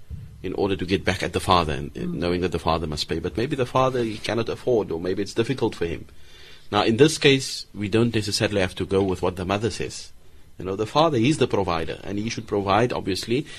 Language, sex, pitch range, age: English, male, 90-115 Hz, 30-49